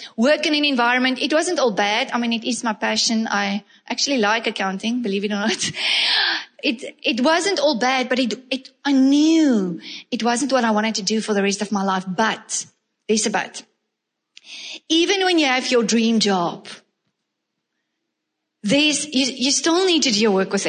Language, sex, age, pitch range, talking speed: English, female, 30-49, 225-305 Hz, 190 wpm